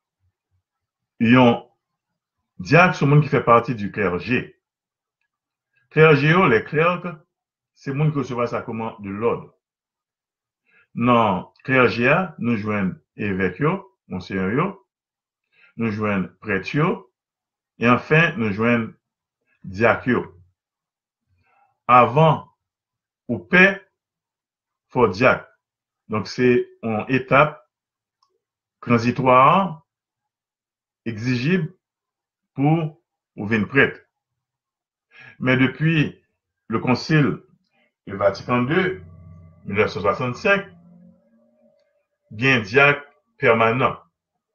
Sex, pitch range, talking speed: male, 110-155 Hz, 90 wpm